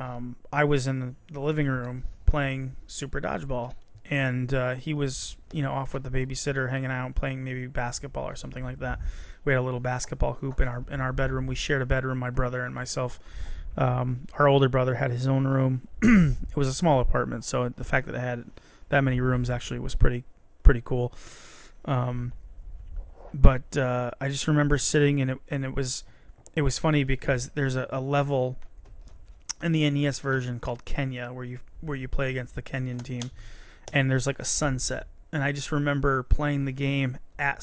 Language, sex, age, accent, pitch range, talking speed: English, male, 30-49, American, 125-140 Hz, 195 wpm